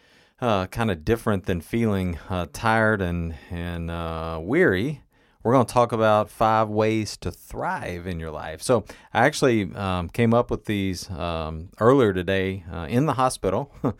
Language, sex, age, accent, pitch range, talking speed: English, male, 40-59, American, 85-100 Hz, 165 wpm